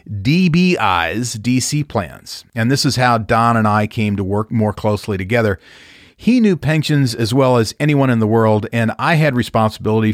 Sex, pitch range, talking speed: male, 105-130 Hz, 180 wpm